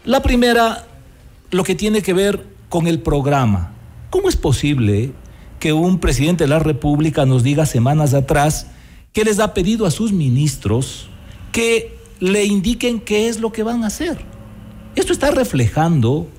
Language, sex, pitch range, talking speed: Spanish, male, 125-195 Hz, 155 wpm